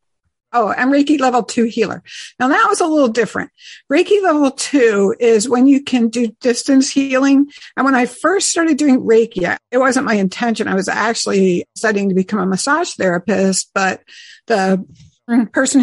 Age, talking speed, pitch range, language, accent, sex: 60-79, 170 wpm, 200-255 Hz, English, American, female